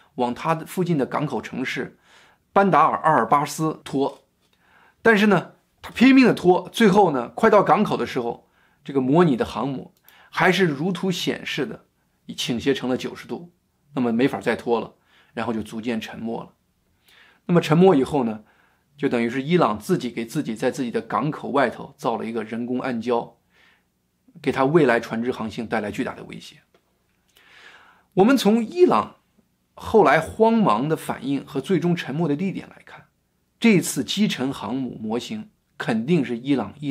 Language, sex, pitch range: Chinese, male, 120-190 Hz